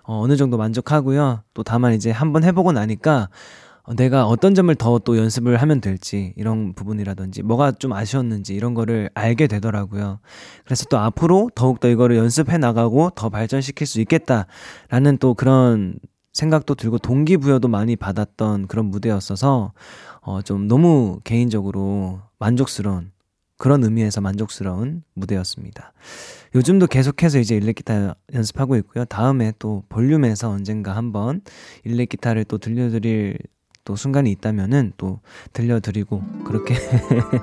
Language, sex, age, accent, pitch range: Korean, male, 20-39, native, 105-140 Hz